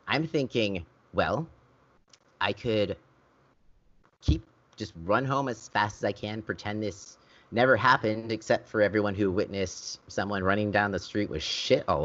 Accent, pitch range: American, 90-110 Hz